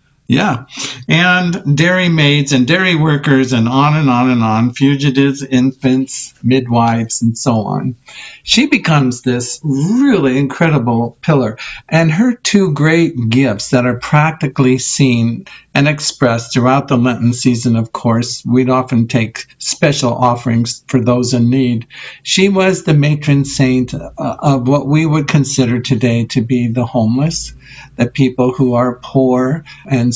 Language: English